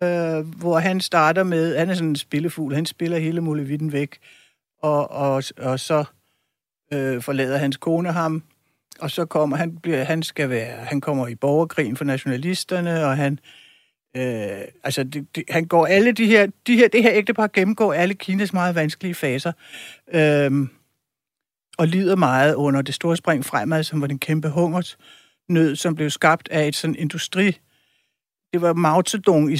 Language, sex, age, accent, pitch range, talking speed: Danish, male, 60-79, native, 150-180 Hz, 175 wpm